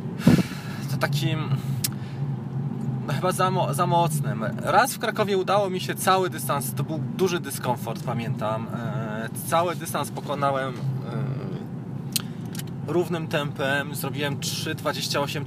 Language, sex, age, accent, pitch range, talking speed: Polish, male, 20-39, native, 135-165 Hz, 105 wpm